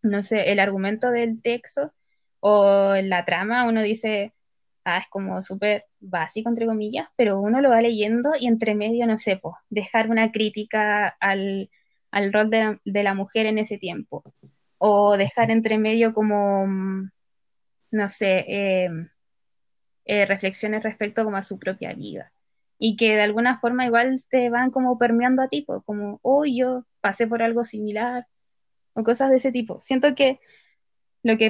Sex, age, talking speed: female, 20-39, 165 wpm